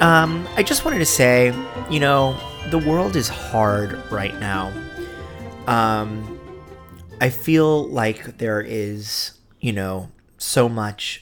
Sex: male